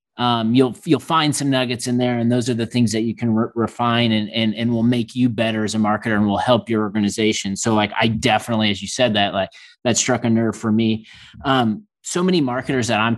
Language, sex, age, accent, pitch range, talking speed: English, male, 30-49, American, 110-125 Hz, 245 wpm